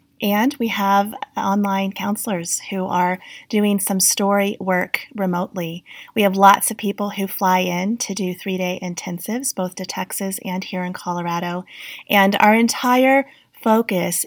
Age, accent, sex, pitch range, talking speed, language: 30-49, American, female, 180-210 Hz, 150 wpm, English